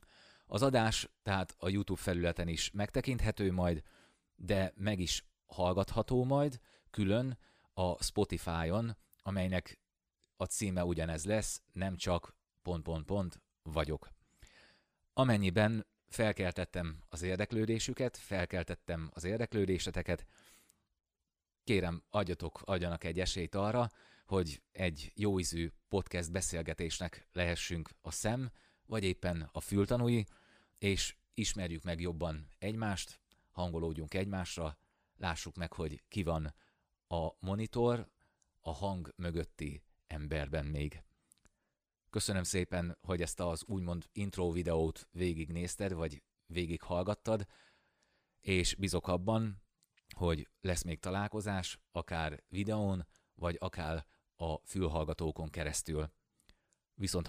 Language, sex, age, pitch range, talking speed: Hungarian, male, 30-49, 80-100 Hz, 100 wpm